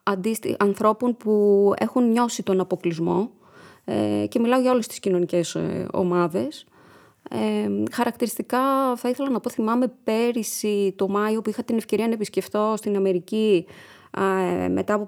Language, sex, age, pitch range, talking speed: Greek, female, 20-39, 195-245 Hz, 125 wpm